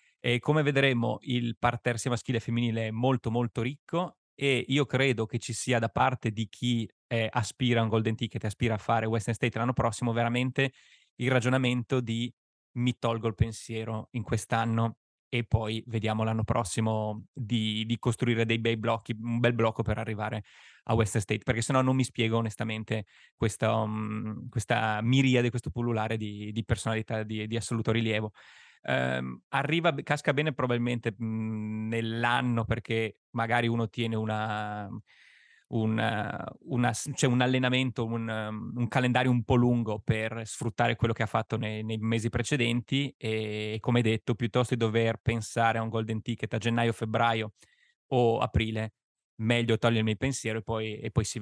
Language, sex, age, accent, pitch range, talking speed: Italian, male, 20-39, native, 110-120 Hz, 165 wpm